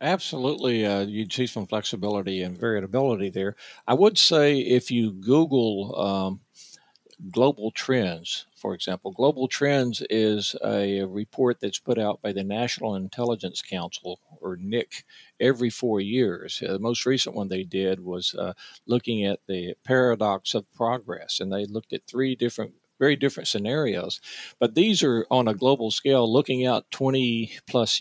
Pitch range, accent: 100-130 Hz, American